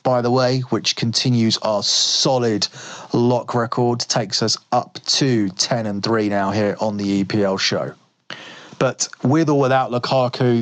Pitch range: 110-125 Hz